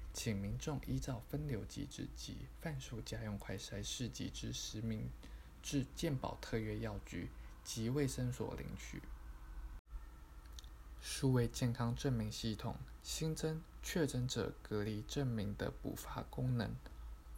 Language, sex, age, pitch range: Chinese, male, 20-39, 80-125 Hz